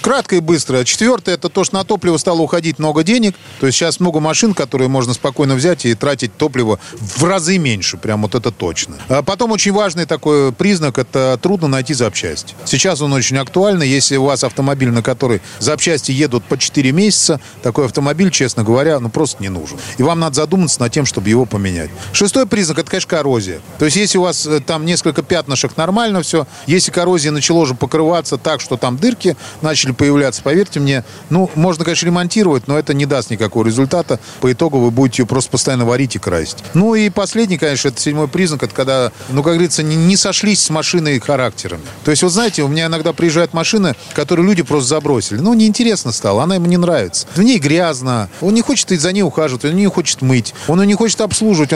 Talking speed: 210 wpm